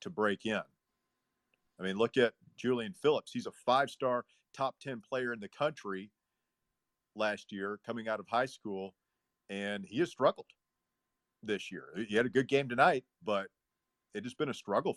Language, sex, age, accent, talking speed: English, male, 40-59, American, 170 wpm